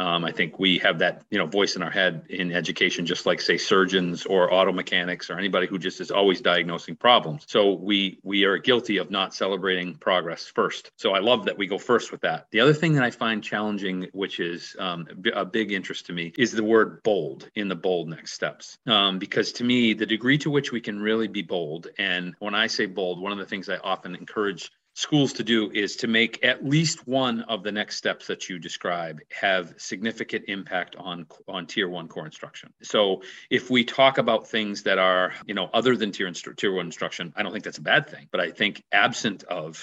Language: English